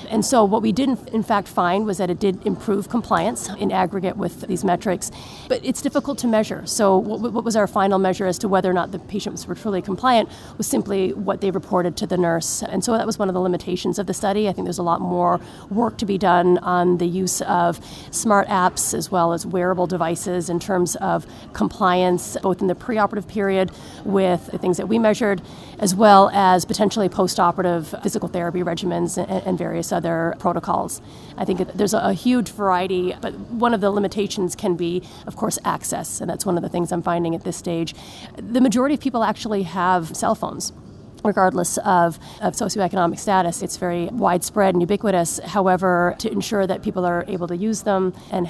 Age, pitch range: 30-49, 180-210 Hz